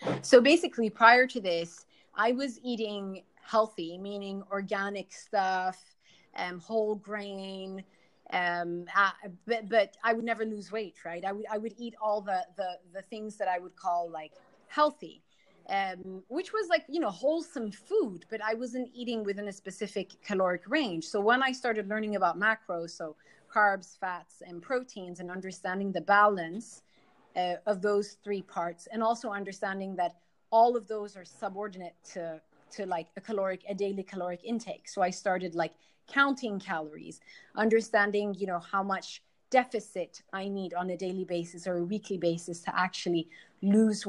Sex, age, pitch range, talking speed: female, 30-49, 180-220 Hz, 165 wpm